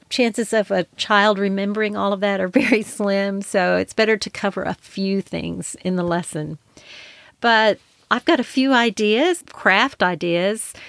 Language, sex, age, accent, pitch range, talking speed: English, female, 40-59, American, 185-220 Hz, 165 wpm